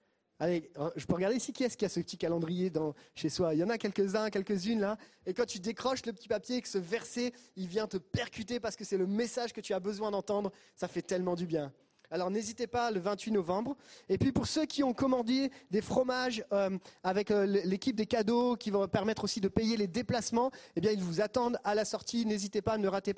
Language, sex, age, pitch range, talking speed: French, male, 30-49, 190-235 Hz, 240 wpm